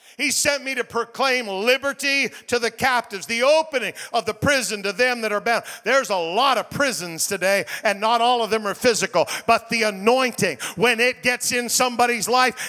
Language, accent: English, American